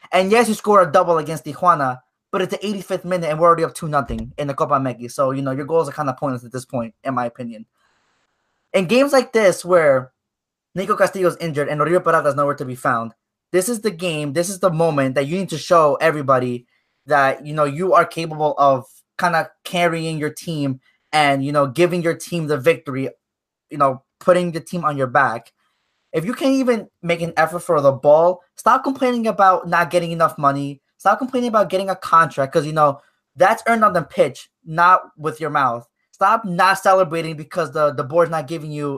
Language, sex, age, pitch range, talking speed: English, male, 20-39, 145-180 Hz, 215 wpm